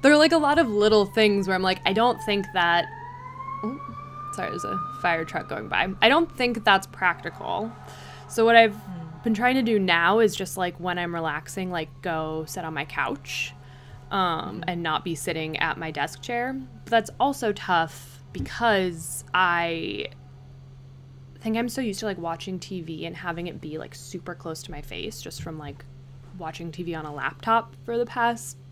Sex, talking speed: female, 195 wpm